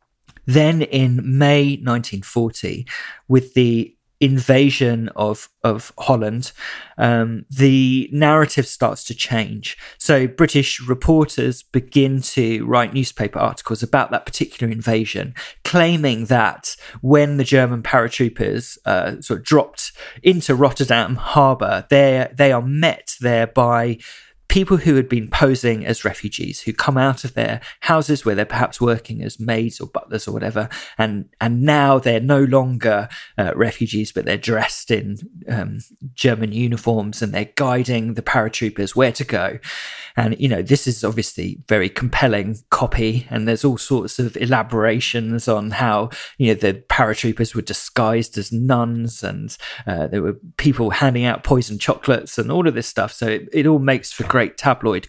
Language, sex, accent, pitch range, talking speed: English, male, British, 110-135 Hz, 150 wpm